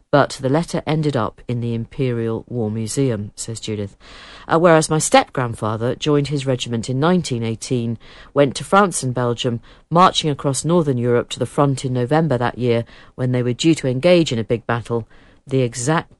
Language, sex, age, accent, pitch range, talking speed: English, female, 50-69, British, 120-165 Hz, 180 wpm